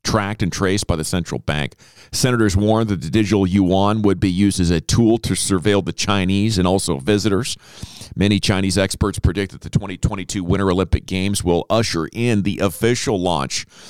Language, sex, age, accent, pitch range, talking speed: English, male, 40-59, American, 95-125 Hz, 180 wpm